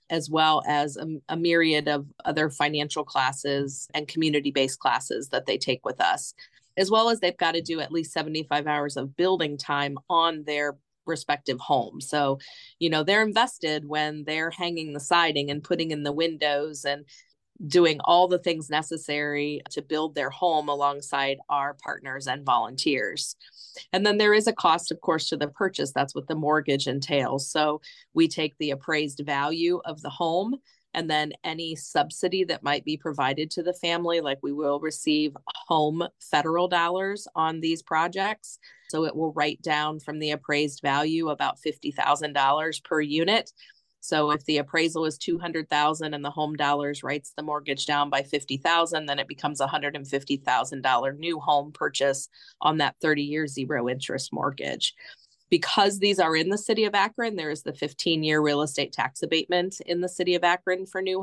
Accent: American